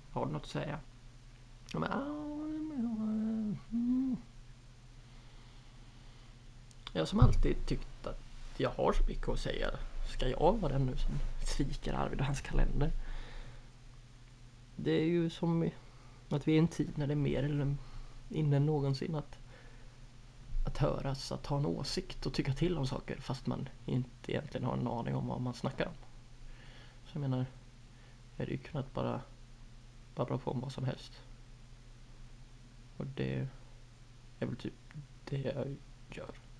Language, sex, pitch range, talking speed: Swedish, male, 120-145 Hz, 145 wpm